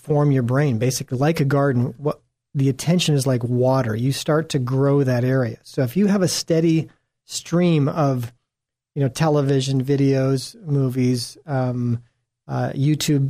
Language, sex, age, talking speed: English, male, 40-59, 160 wpm